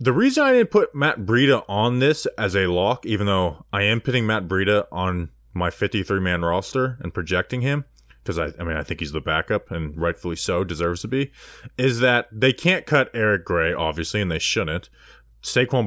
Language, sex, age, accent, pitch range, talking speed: English, male, 20-39, American, 90-125 Hz, 200 wpm